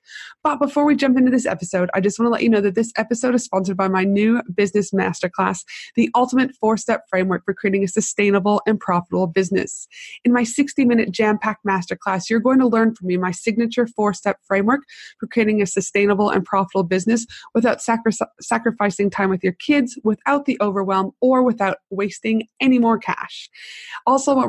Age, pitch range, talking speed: 20-39, 195-235 Hz, 180 wpm